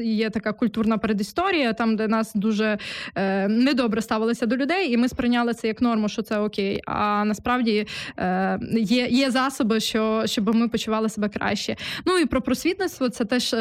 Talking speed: 170 wpm